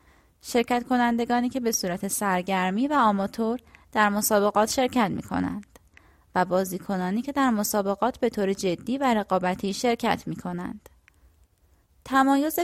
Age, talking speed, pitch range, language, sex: 20-39, 120 wpm, 190-245 Hz, Persian, female